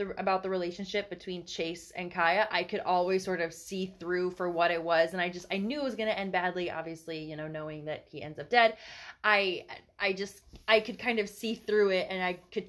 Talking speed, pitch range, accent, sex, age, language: 240 wpm, 185-225 Hz, American, female, 20-39, English